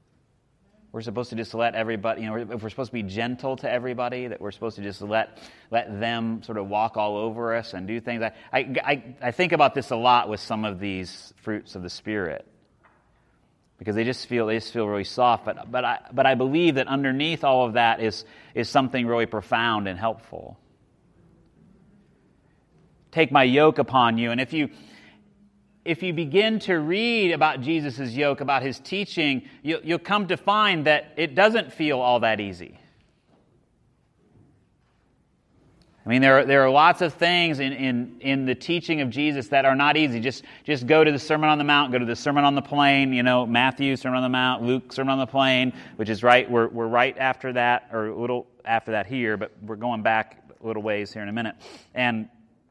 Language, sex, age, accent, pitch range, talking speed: English, male, 30-49, American, 115-145 Hz, 205 wpm